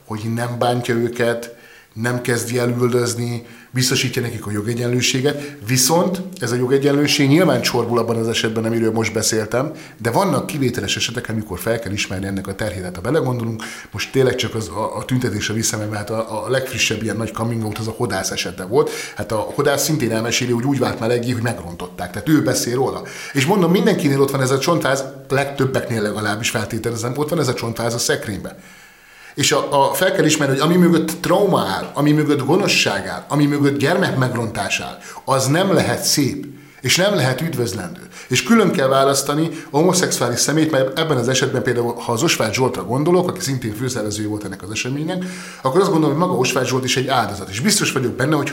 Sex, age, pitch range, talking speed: male, 30-49, 115-145 Hz, 190 wpm